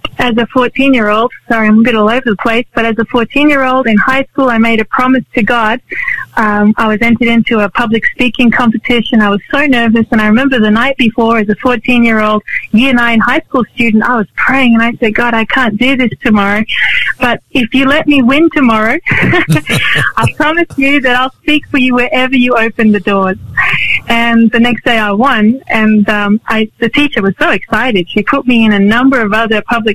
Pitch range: 215-255 Hz